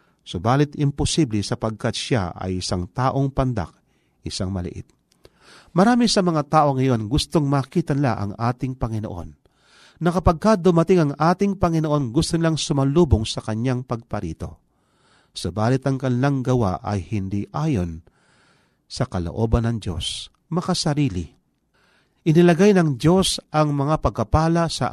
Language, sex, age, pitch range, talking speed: Filipino, male, 40-59, 100-155 Hz, 125 wpm